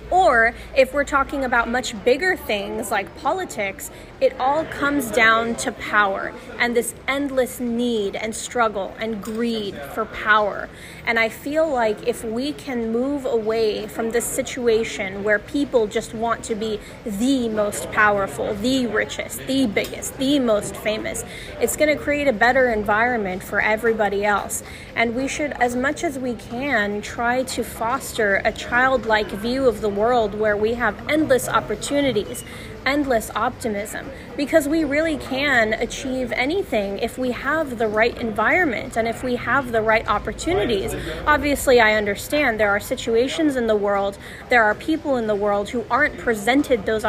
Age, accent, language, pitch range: 20-39, American, English, 220-265 Hz